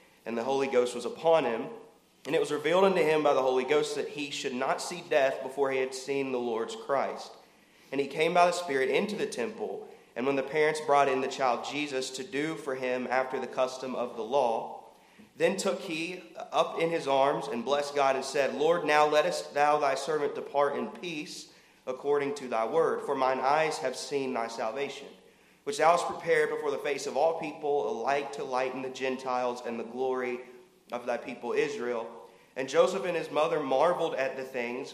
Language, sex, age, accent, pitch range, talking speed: English, male, 30-49, American, 130-155 Hz, 210 wpm